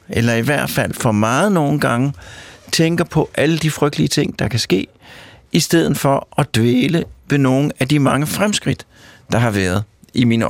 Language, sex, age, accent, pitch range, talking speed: Danish, male, 60-79, native, 130-170 Hz, 190 wpm